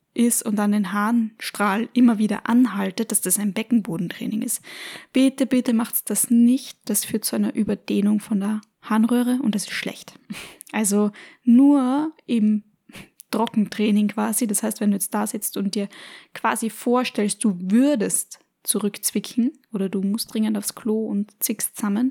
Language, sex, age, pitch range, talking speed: German, female, 10-29, 215-250 Hz, 155 wpm